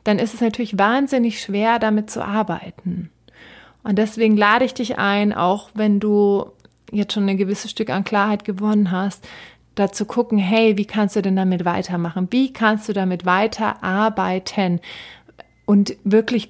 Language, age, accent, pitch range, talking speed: German, 30-49, German, 190-220 Hz, 155 wpm